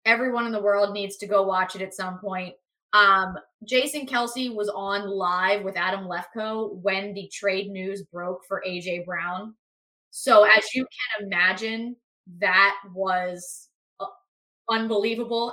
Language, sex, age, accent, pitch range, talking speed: English, female, 20-39, American, 190-235 Hz, 145 wpm